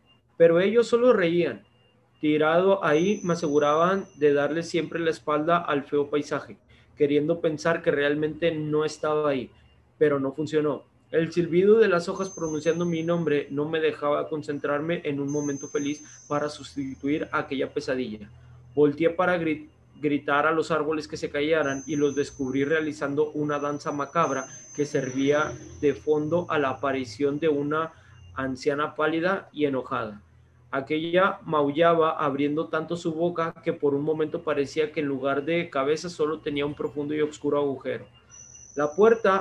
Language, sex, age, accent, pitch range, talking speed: Spanish, male, 30-49, Mexican, 140-165 Hz, 150 wpm